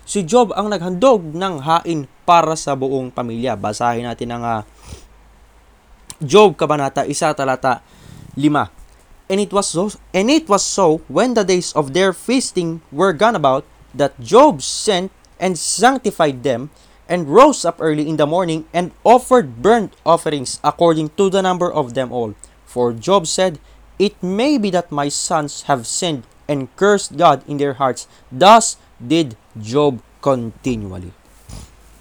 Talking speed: 150 wpm